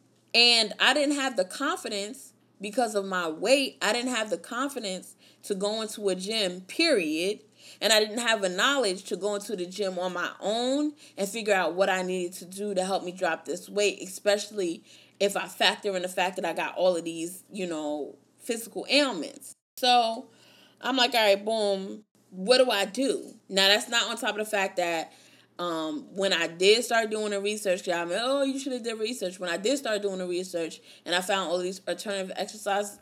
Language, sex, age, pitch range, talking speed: English, female, 20-39, 175-215 Hz, 210 wpm